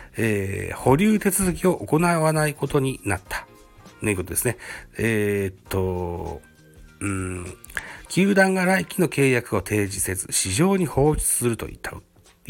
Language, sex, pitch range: Japanese, male, 95-125 Hz